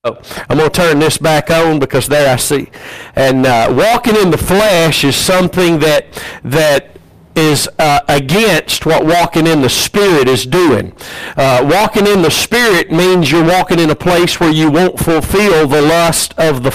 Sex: male